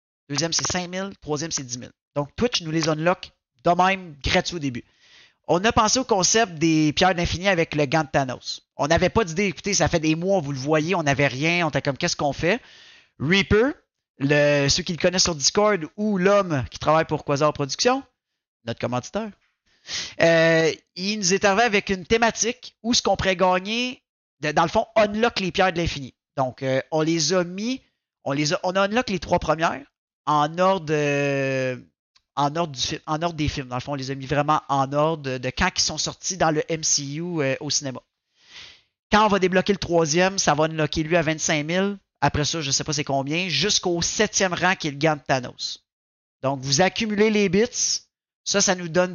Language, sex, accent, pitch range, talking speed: French, male, Canadian, 145-185 Hz, 215 wpm